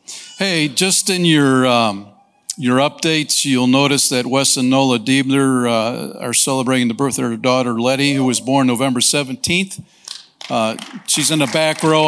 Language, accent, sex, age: English, American, male, 50-69